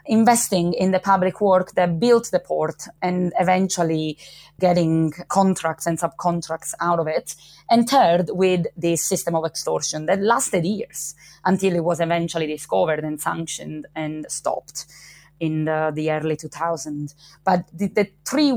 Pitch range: 160-190 Hz